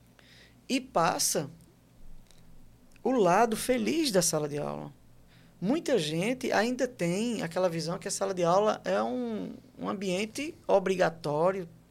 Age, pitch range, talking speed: 20-39, 155-195 Hz, 125 wpm